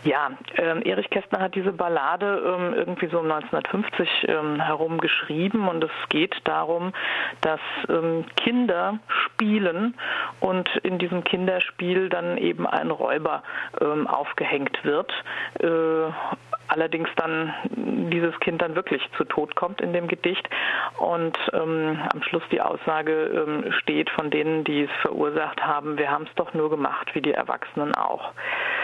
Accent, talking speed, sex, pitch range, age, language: German, 150 wpm, female, 155-180 Hz, 50-69, German